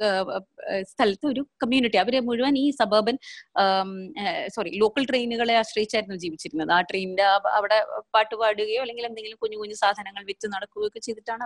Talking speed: 130 wpm